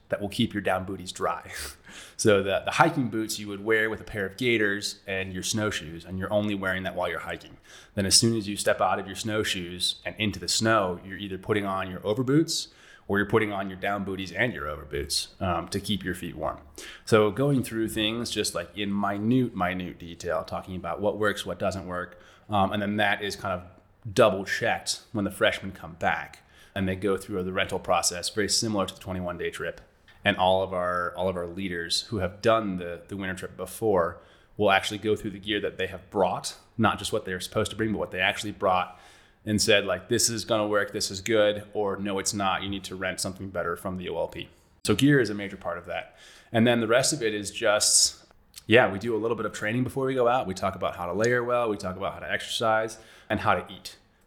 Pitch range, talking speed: 95-110 Hz, 240 wpm